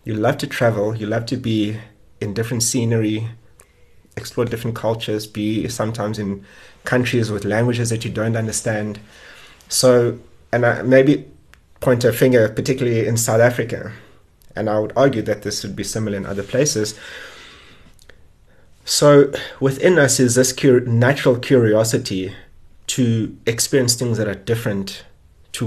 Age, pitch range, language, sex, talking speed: 30-49, 105-120 Hz, English, male, 140 wpm